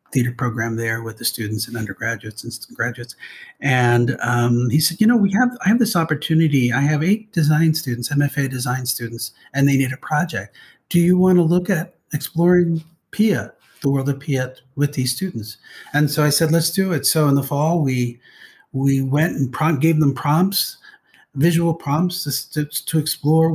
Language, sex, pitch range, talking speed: English, male, 135-160 Hz, 185 wpm